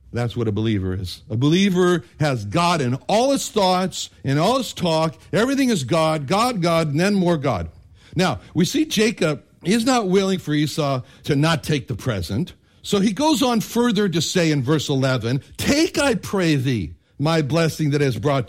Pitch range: 140-200 Hz